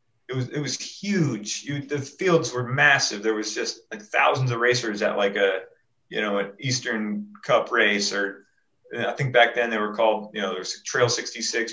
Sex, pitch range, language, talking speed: male, 110-140 Hz, English, 200 wpm